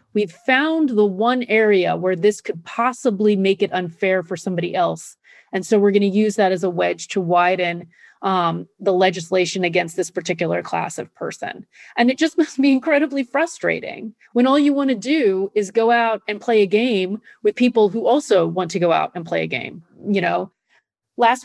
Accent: American